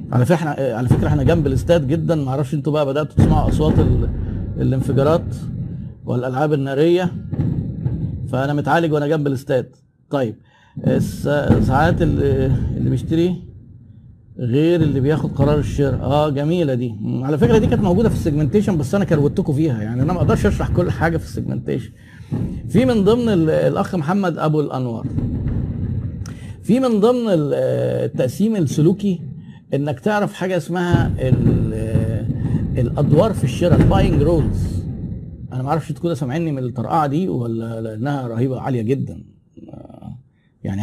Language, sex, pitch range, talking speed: Arabic, male, 125-170 Hz, 130 wpm